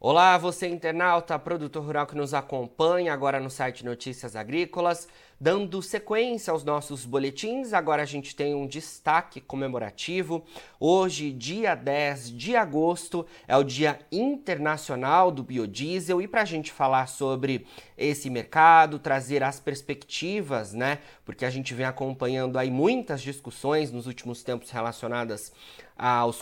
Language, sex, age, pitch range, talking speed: Portuguese, male, 30-49, 125-170 Hz, 140 wpm